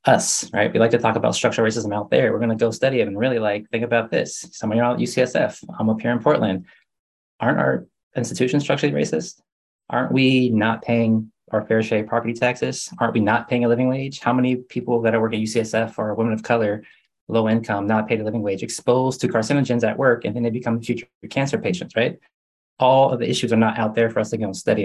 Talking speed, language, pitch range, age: 240 wpm, English, 105-120 Hz, 20-39